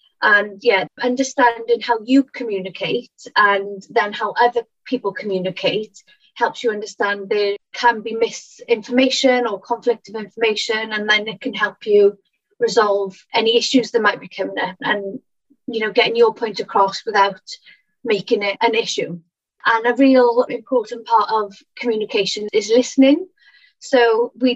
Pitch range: 215-265 Hz